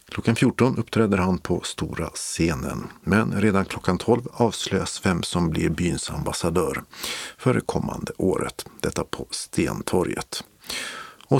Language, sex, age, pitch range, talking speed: Swedish, male, 50-69, 90-120 Hz, 130 wpm